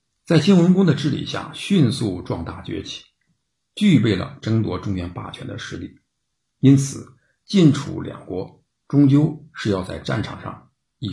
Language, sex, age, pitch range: Chinese, male, 50-69, 105-150 Hz